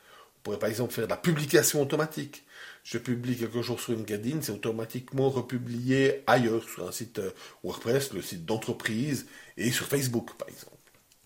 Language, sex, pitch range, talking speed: French, male, 125-170 Hz, 165 wpm